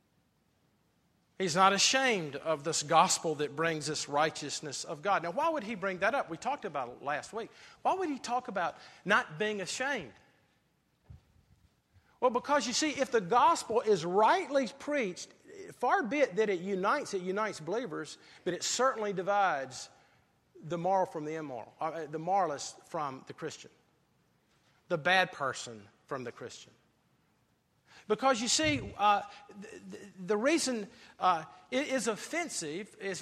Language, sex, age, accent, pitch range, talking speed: English, male, 40-59, American, 180-245 Hz, 150 wpm